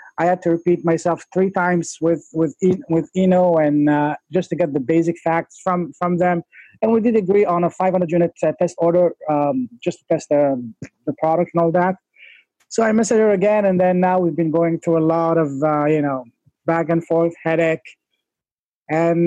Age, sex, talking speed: 20-39, male, 200 wpm